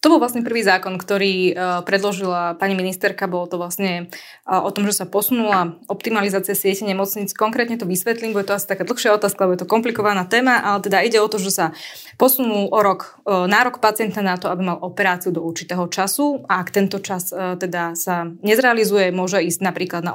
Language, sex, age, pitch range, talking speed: Slovak, female, 20-39, 180-215 Hz, 200 wpm